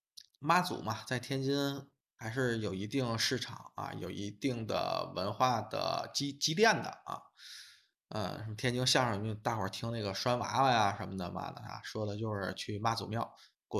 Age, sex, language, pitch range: 20-39, male, Chinese, 110-135 Hz